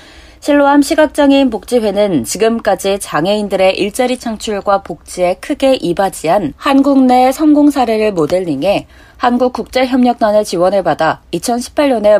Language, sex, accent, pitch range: Korean, female, native, 185-255 Hz